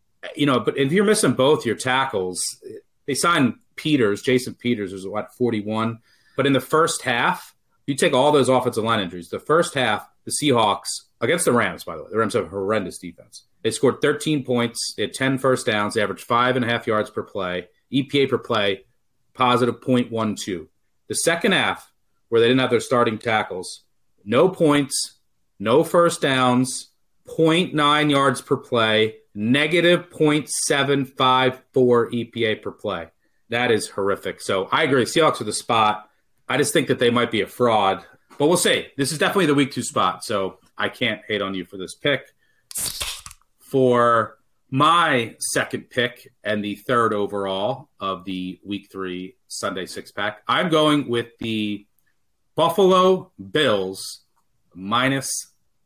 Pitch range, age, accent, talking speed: 110-140 Hz, 30-49, American, 165 wpm